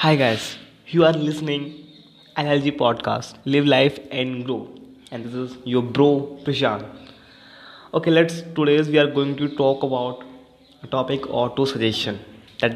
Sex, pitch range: male, 125-150 Hz